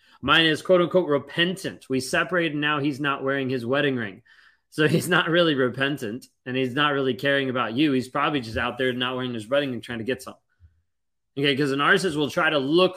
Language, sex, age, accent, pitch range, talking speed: English, male, 20-39, American, 120-145 Hz, 220 wpm